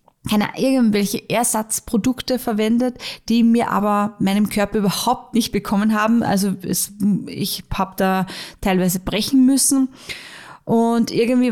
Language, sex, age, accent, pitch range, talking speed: German, female, 20-39, German, 200-240 Hz, 120 wpm